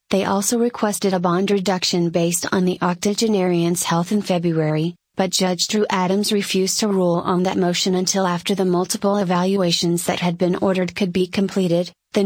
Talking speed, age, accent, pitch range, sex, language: 175 wpm, 30-49, American, 180-200 Hz, female, English